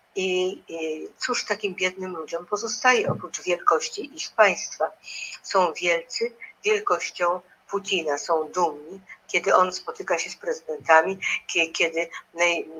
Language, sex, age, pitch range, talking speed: Polish, female, 50-69, 170-245 Hz, 115 wpm